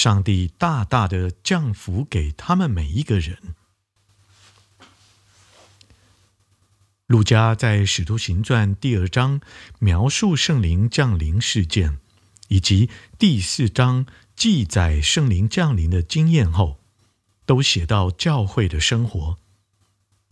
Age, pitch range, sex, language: 50-69, 95-130 Hz, male, Chinese